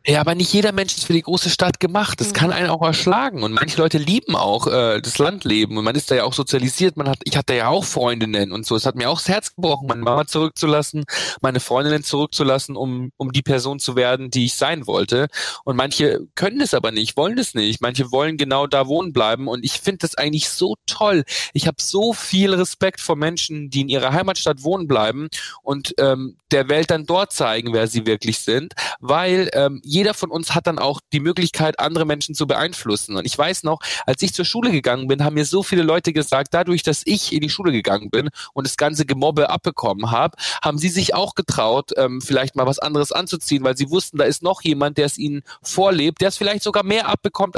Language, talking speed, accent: German, 225 wpm, German